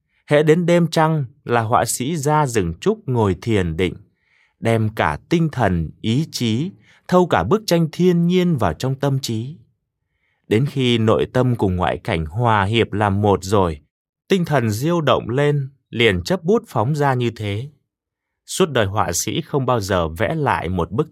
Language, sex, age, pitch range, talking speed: Vietnamese, male, 20-39, 95-140 Hz, 180 wpm